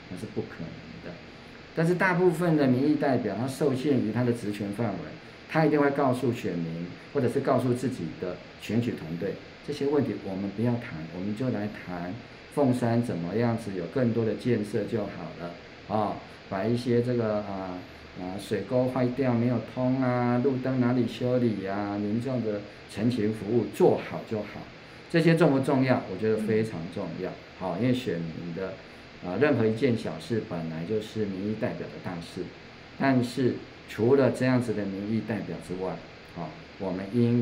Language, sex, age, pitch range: Chinese, male, 50-69, 95-125 Hz